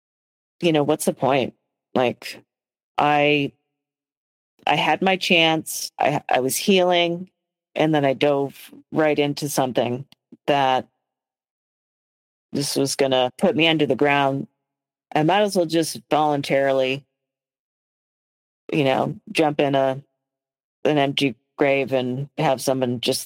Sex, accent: female, American